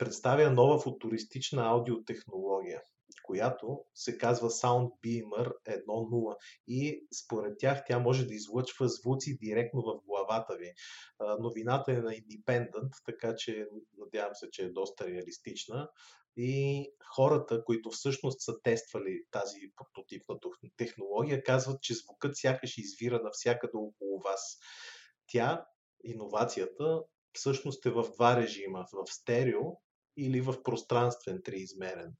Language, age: Bulgarian, 30-49